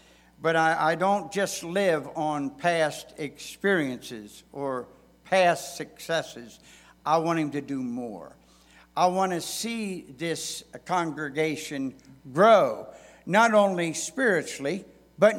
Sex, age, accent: male, 60-79, American